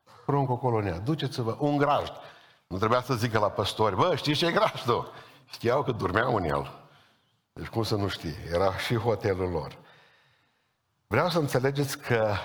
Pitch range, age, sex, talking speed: 105-125 Hz, 50-69, male, 170 wpm